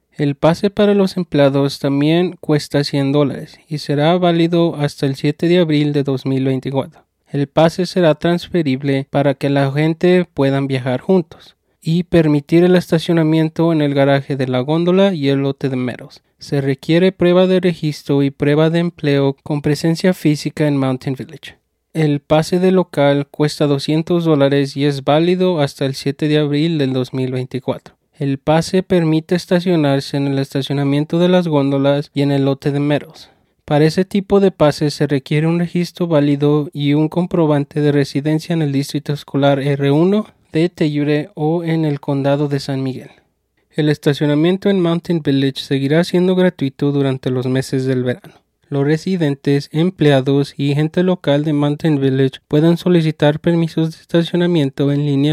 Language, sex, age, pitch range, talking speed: English, male, 30-49, 140-170 Hz, 165 wpm